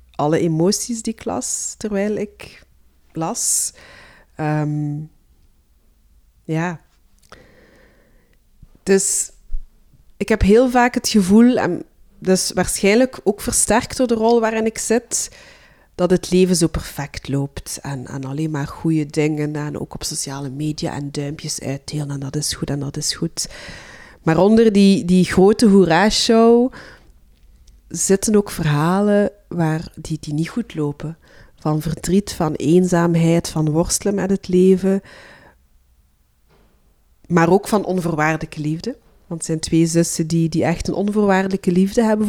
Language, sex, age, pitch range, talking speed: Dutch, female, 30-49, 150-200 Hz, 140 wpm